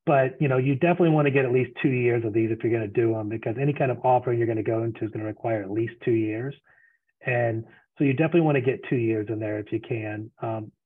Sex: male